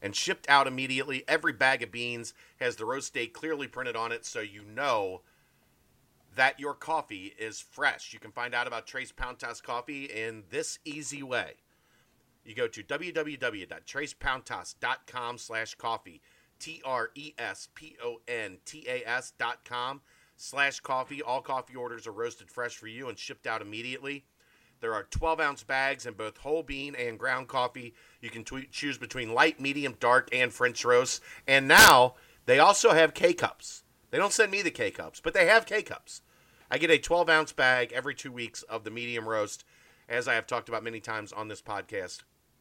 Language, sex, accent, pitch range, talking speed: English, male, American, 115-155 Hz, 165 wpm